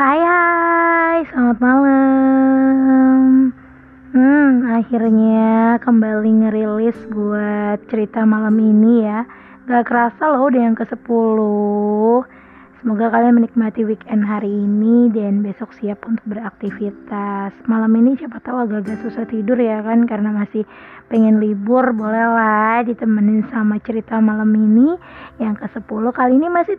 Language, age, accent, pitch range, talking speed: Indonesian, 20-39, native, 215-245 Hz, 125 wpm